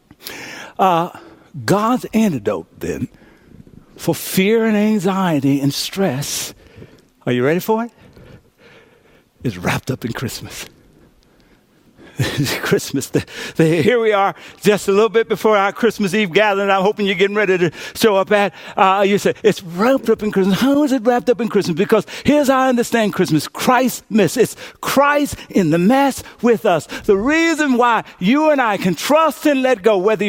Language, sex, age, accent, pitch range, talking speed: English, male, 60-79, American, 195-275 Hz, 165 wpm